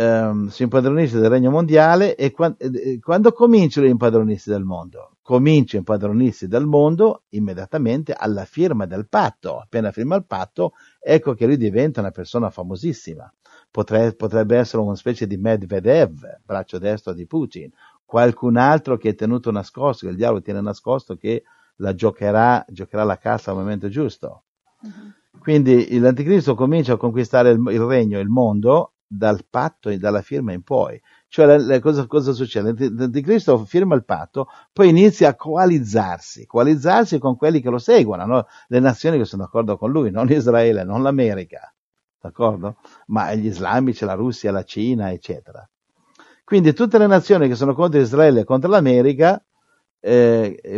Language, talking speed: Italian, 155 wpm